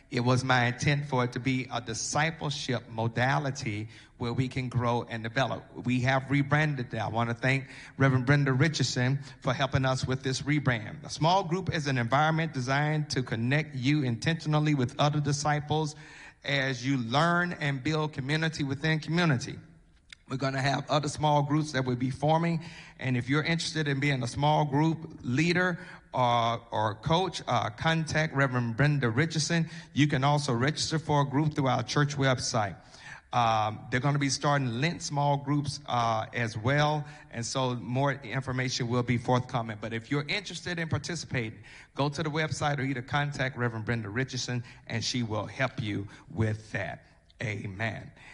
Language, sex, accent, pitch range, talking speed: English, male, American, 125-150 Hz, 175 wpm